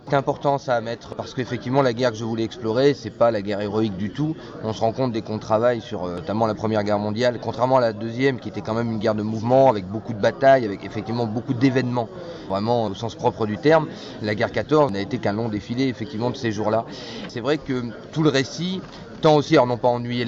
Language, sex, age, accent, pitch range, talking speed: French, male, 30-49, French, 115-140 Hz, 245 wpm